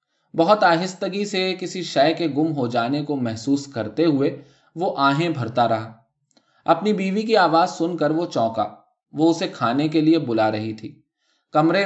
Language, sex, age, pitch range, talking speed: Urdu, male, 20-39, 120-170 Hz, 170 wpm